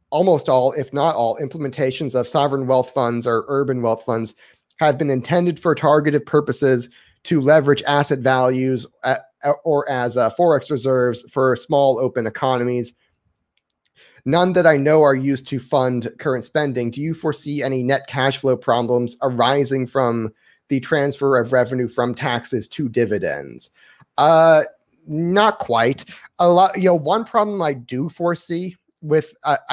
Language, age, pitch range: English, 30-49, 125-155 Hz